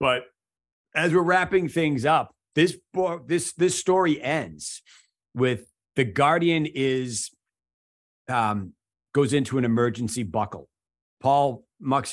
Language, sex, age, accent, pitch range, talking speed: English, male, 40-59, American, 110-145 Hz, 120 wpm